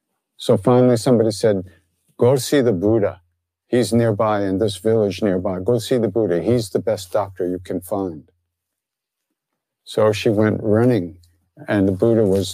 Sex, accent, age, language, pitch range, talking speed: male, American, 50-69, English, 90-115 Hz, 160 wpm